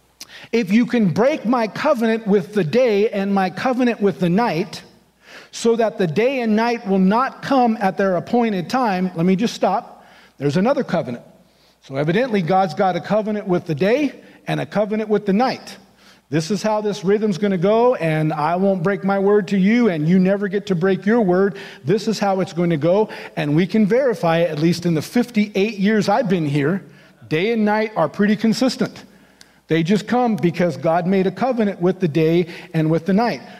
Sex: male